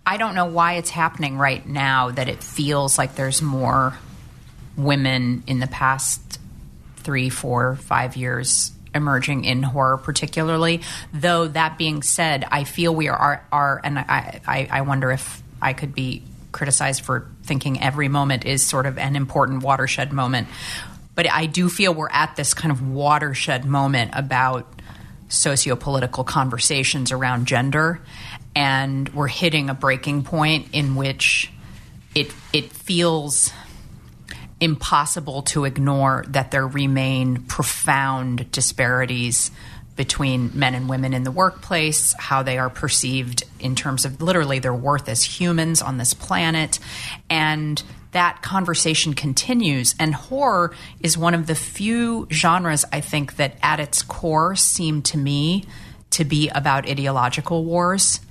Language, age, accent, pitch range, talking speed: English, 30-49, American, 130-155 Hz, 145 wpm